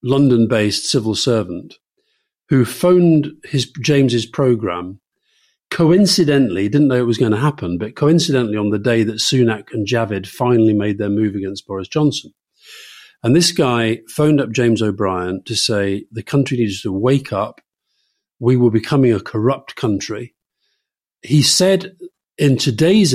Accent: British